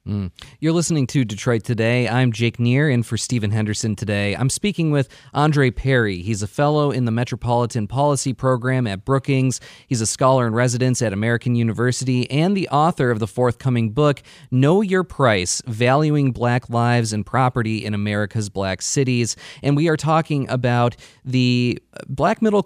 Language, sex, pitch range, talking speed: English, male, 115-145 Hz, 170 wpm